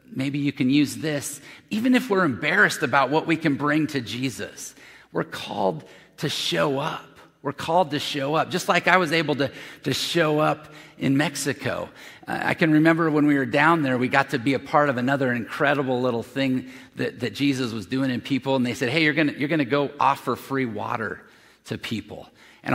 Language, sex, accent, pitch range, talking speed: English, male, American, 130-155 Hz, 205 wpm